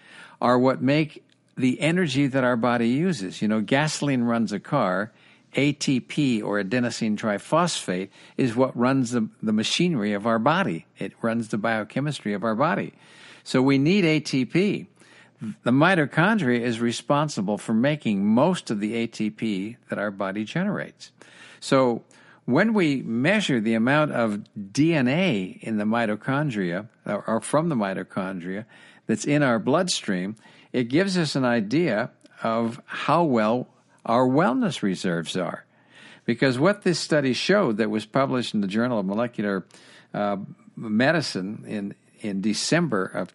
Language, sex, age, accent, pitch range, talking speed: English, male, 60-79, American, 115-150 Hz, 145 wpm